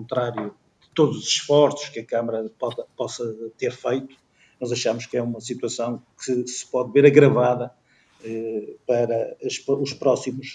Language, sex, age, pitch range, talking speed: Portuguese, male, 50-69, 125-140 Hz, 140 wpm